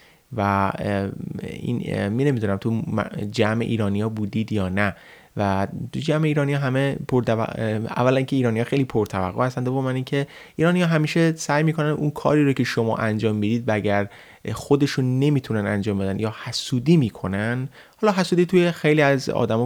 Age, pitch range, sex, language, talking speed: 30-49, 105-140 Hz, male, Persian, 165 wpm